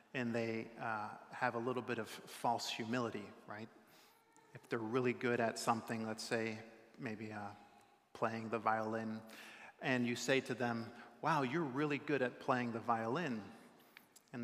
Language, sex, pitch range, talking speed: English, male, 110-125 Hz, 160 wpm